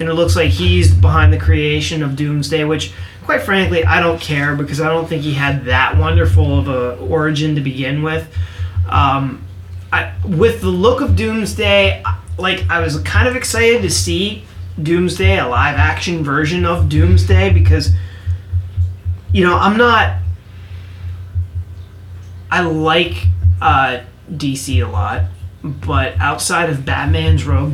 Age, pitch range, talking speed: 30-49, 90-135 Hz, 145 wpm